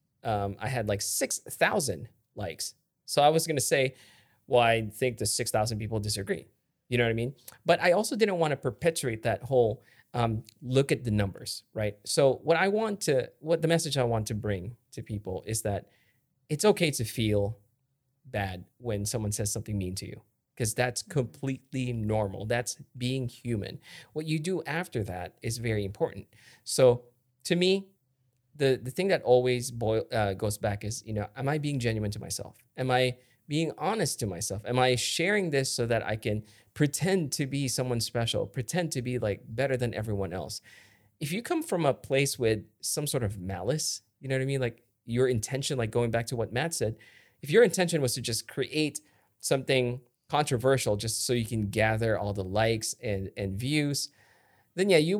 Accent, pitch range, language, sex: American, 110-145 Hz, English, male